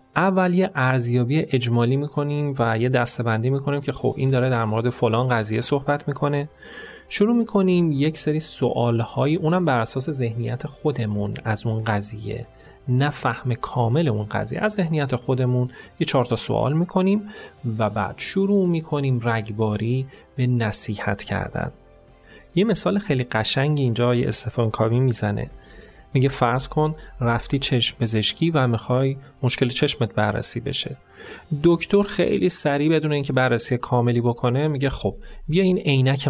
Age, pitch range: 30-49, 115-155 Hz